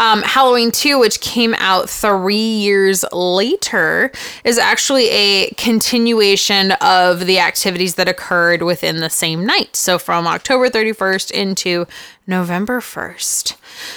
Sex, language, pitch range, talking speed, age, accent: female, English, 185-230 Hz, 125 wpm, 20-39, American